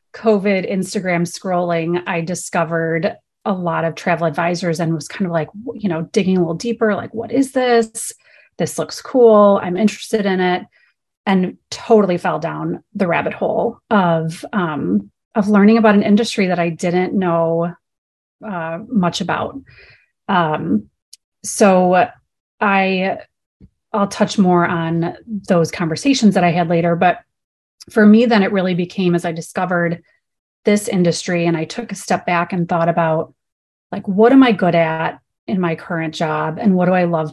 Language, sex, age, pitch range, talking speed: English, female, 30-49, 170-205 Hz, 165 wpm